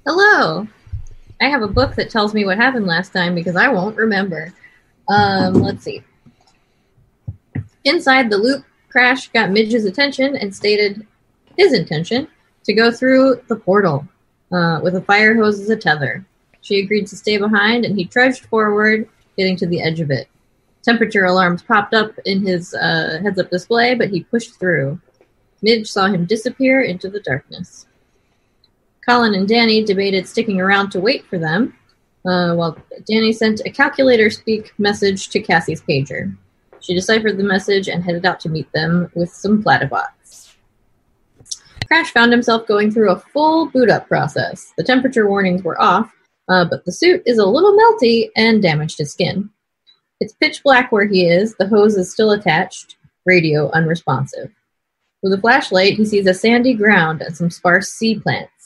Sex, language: female, English